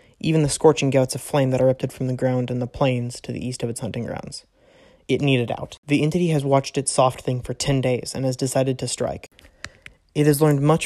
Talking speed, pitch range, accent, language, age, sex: 240 wpm, 125-140 Hz, American, English, 20-39, male